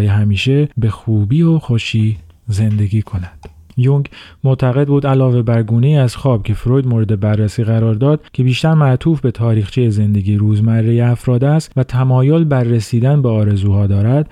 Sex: male